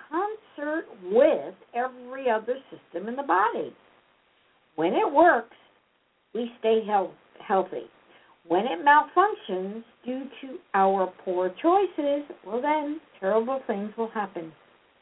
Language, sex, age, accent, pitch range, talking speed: English, female, 60-79, American, 205-320 Hz, 115 wpm